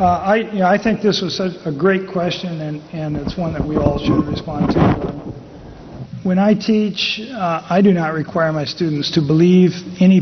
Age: 50-69